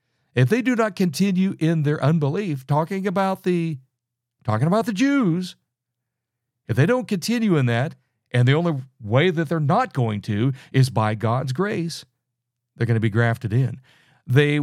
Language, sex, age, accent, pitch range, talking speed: English, male, 60-79, American, 120-160 Hz, 170 wpm